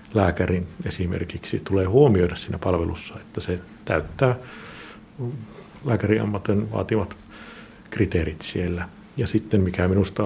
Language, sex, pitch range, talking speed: Finnish, male, 90-105 Hz, 100 wpm